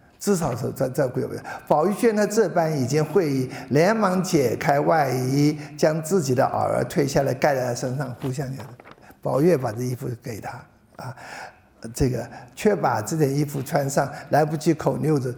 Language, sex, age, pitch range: Chinese, male, 50-69, 135-180 Hz